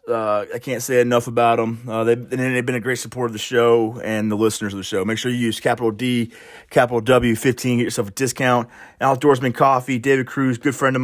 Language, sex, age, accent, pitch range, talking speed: English, male, 20-39, American, 115-140 Hz, 240 wpm